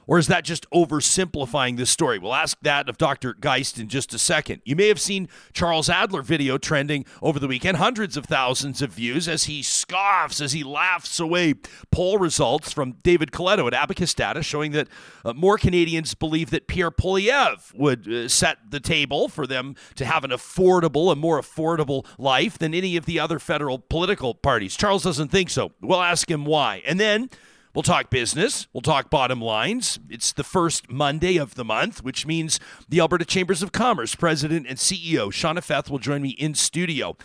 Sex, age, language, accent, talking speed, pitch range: male, 40-59, English, American, 195 wpm, 135-180 Hz